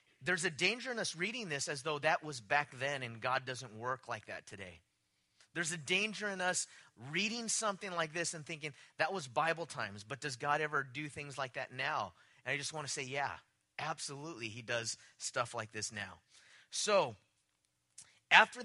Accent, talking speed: American, 190 wpm